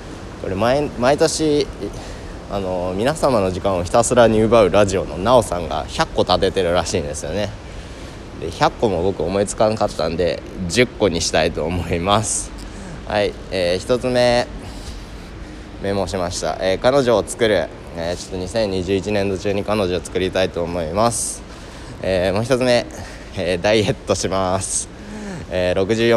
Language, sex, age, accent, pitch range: Japanese, male, 20-39, native, 90-110 Hz